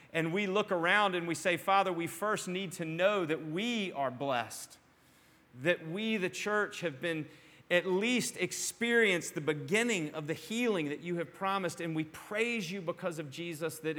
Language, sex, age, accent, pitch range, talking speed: English, male, 40-59, American, 155-195 Hz, 185 wpm